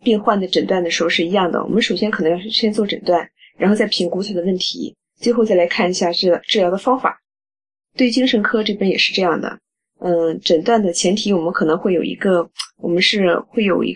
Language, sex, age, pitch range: Chinese, female, 20-39, 175-220 Hz